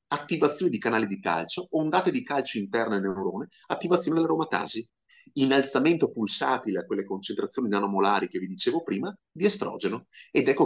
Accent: native